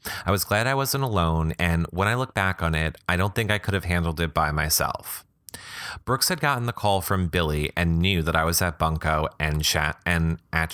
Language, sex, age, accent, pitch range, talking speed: English, male, 30-49, American, 80-95 Hz, 225 wpm